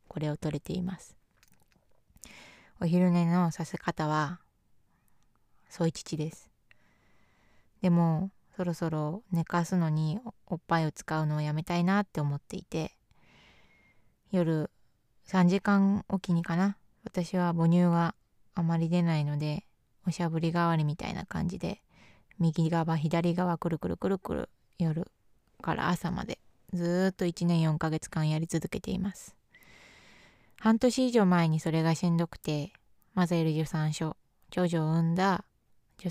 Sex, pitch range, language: female, 155-185 Hz, Japanese